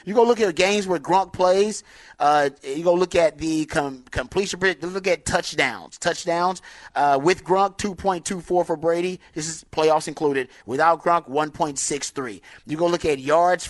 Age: 30-49